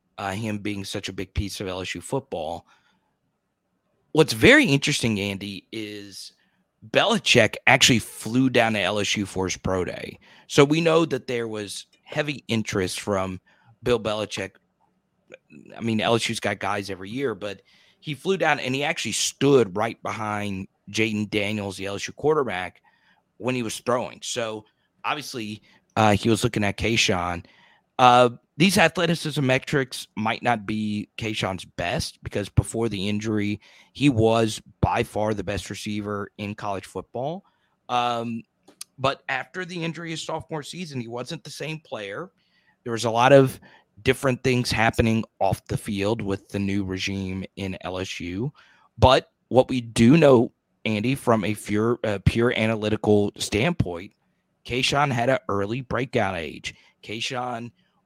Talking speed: 150 wpm